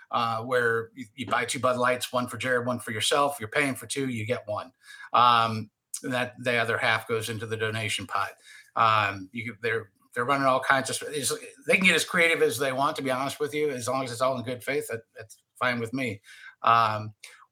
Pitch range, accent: 120-140 Hz, American